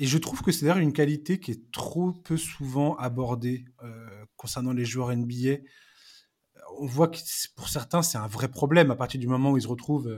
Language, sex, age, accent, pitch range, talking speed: French, male, 20-39, French, 125-160 Hz, 210 wpm